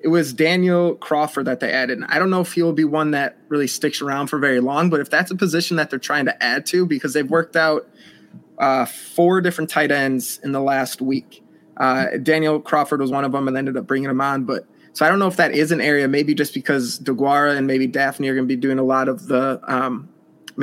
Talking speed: 255 wpm